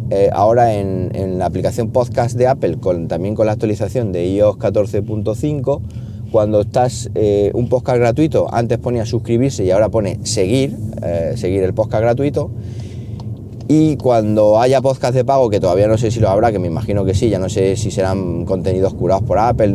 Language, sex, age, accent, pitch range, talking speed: Spanish, male, 30-49, Spanish, 105-130 Hz, 180 wpm